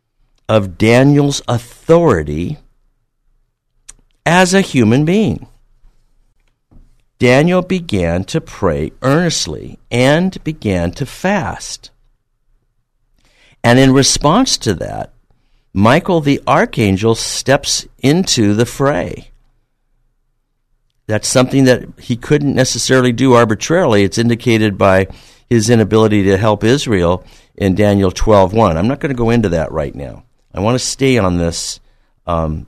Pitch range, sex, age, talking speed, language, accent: 90-130 Hz, male, 60-79, 115 wpm, English, American